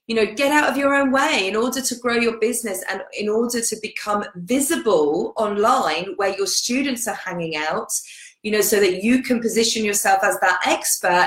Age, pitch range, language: 30-49, 210-265 Hz, English